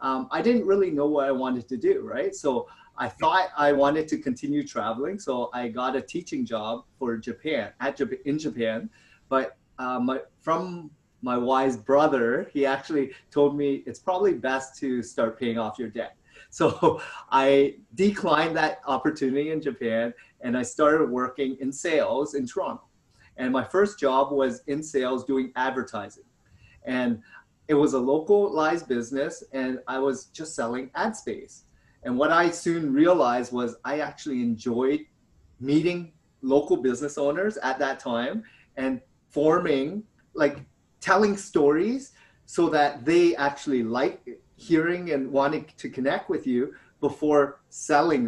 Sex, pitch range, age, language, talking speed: male, 130-160 Hz, 30-49, English, 150 wpm